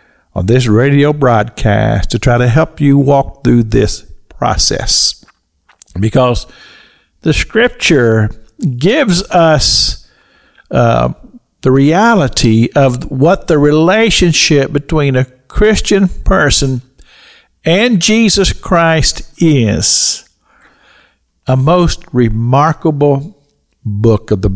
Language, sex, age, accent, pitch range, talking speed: English, male, 50-69, American, 125-185 Hz, 95 wpm